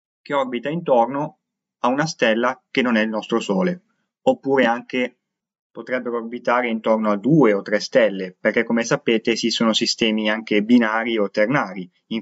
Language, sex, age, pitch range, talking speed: Italian, male, 20-39, 105-125 Hz, 155 wpm